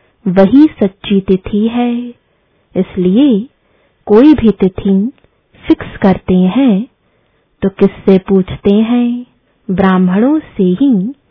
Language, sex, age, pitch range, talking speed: English, female, 20-39, 185-240 Hz, 95 wpm